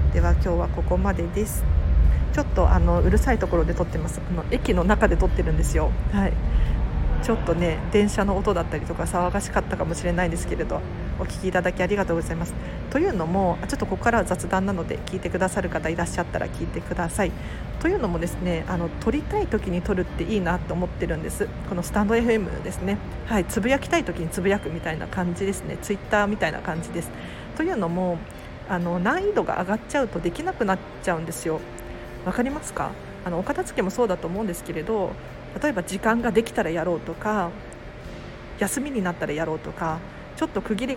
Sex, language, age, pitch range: female, Japanese, 40-59, 160-215 Hz